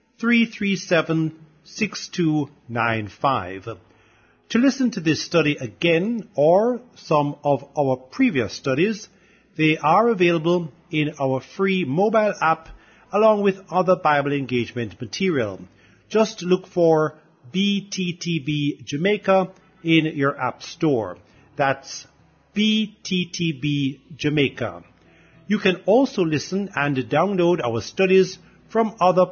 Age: 50-69